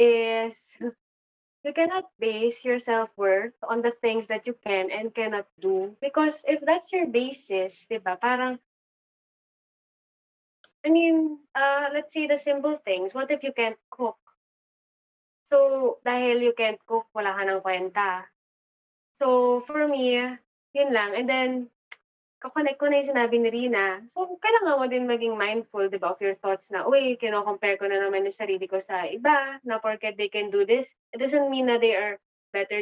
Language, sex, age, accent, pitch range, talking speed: Filipino, female, 20-39, native, 205-255 Hz, 155 wpm